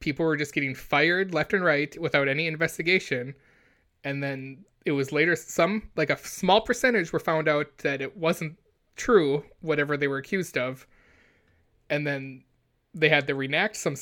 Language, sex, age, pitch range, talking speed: English, male, 20-39, 135-155 Hz, 170 wpm